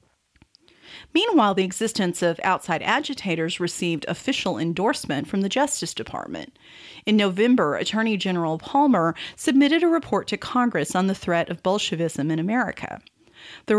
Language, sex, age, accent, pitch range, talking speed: English, female, 40-59, American, 175-260 Hz, 135 wpm